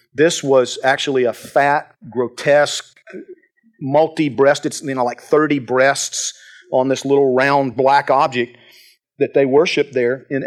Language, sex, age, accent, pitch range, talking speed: English, male, 40-59, American, 130-155 Hz, 130 wpm